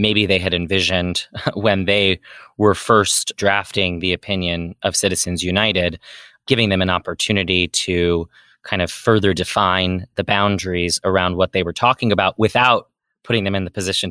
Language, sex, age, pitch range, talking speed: English, male, 20-39, 95-110 Hz, 155 wpm